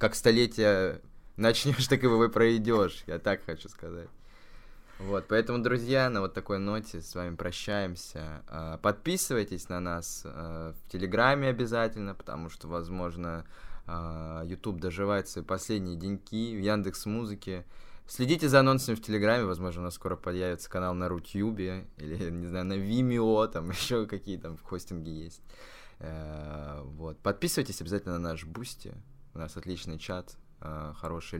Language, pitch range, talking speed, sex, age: Russian, 85-110 Hz, 145 wpm, male, 20-39